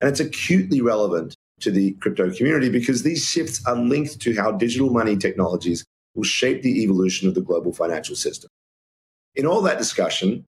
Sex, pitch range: male, 95-130 Hz